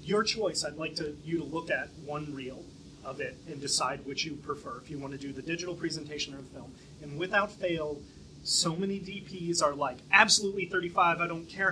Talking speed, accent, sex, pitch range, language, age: 215 wpm, American, male, 145-190 Hz, English, 30-49